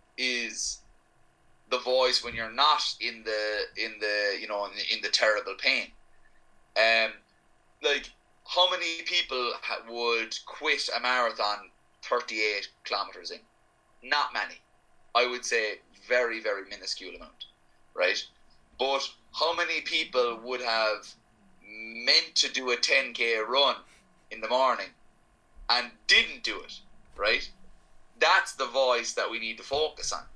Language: English